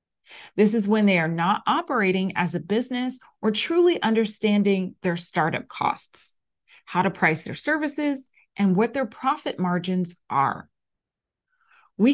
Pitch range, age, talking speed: 180-235 Hz, 30-49, 140 wpm